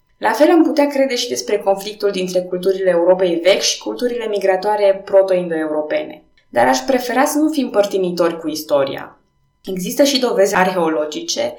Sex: female